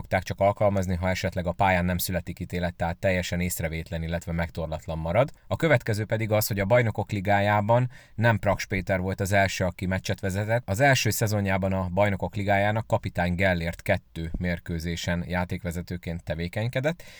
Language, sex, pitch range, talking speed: Hungarian, male, 90-105 Hz, 155 wpm